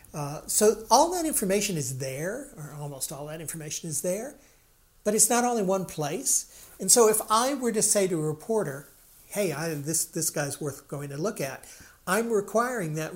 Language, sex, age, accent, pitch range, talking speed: English, male, 50-69, American, 155-205 Hz, 195 wpm